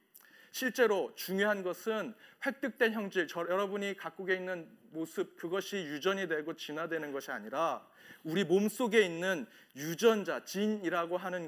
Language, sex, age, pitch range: Korean, male, 40-59, 155-210 Hz